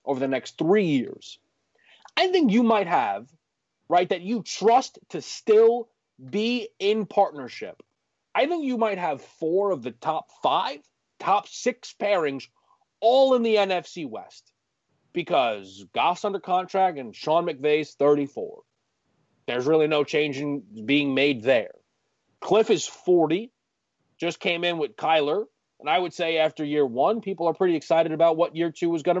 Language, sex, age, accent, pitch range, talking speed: English, male, 30-49, American, 140-200 Hz, 160 wpm